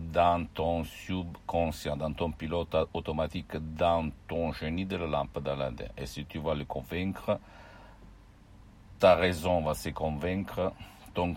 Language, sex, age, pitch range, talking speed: Italian, male, 60-79, 80-100 Hz, 145 wpm